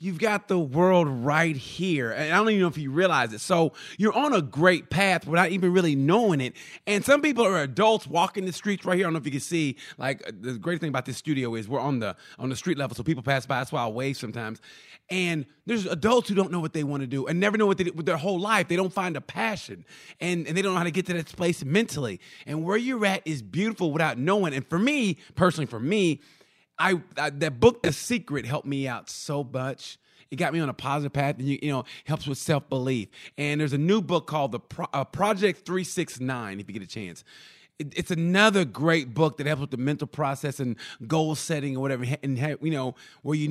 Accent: American